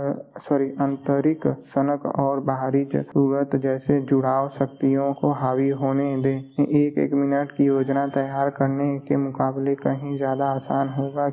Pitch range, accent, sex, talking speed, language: 135-145 Hz, native, male, 130 wpm, Hindi